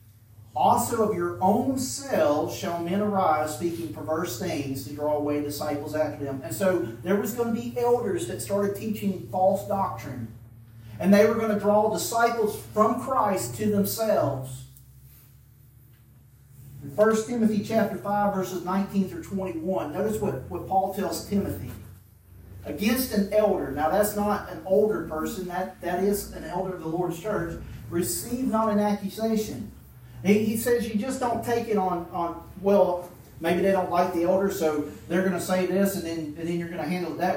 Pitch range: 140-205 Hz